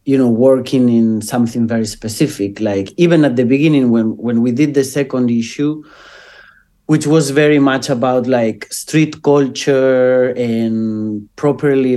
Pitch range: 105-130 Hz